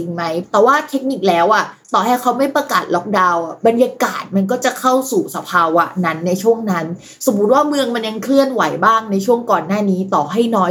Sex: female